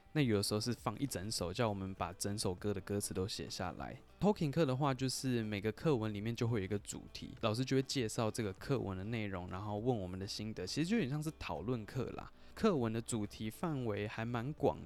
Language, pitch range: Chinese, 100-130 Hz